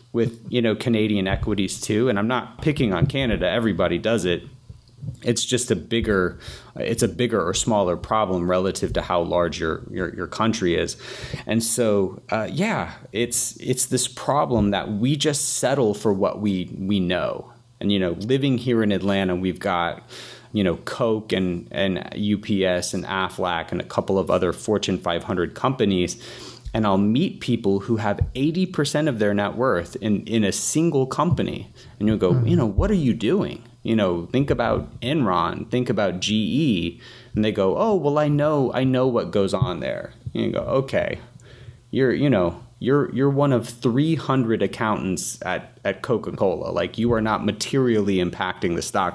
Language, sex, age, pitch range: English, male, 30-49, 95-125 Hz